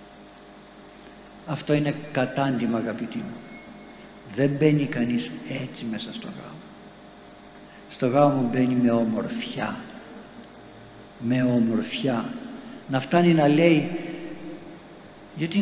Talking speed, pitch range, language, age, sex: 90 wpm, 120-190 Hz, Greek, 60-79, male